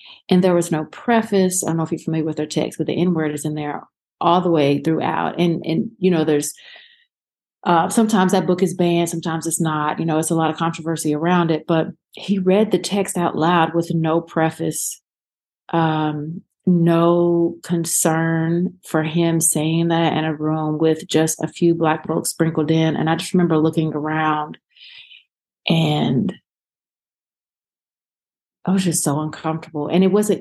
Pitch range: 160-190 Hz